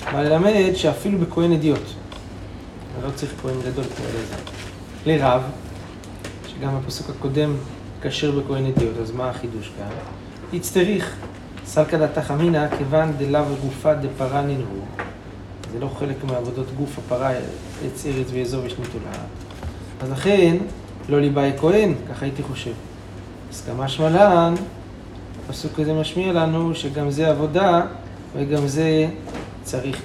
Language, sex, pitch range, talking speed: Hebrew, male, 95-145 Hz, 125 wpm